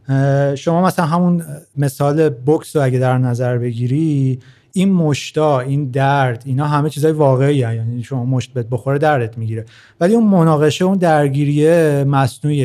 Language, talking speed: Persian, 150 wpm